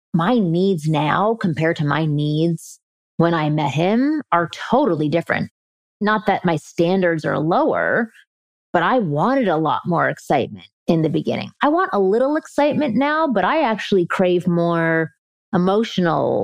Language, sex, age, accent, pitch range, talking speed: English, female, 30-49, American, 170-220 Hz, 155 wpm